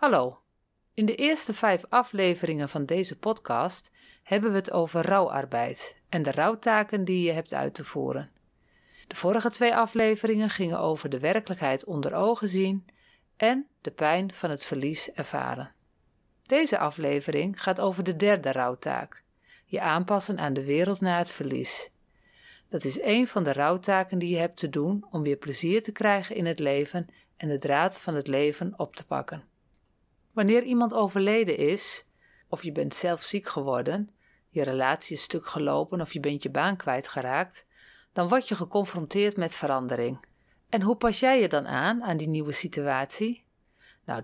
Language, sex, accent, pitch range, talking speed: Dutch, female, Dutch, 150-205 Hz, 165 wpm